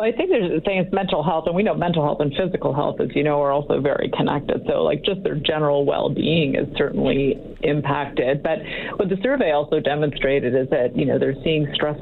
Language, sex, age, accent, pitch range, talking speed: English, female, 40-59, American, 145-175 Hz, 225 wpm